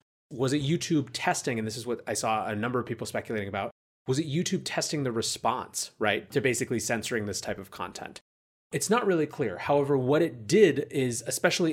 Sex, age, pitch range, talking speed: male, 30-49, 110-140 Hz, 205 wpm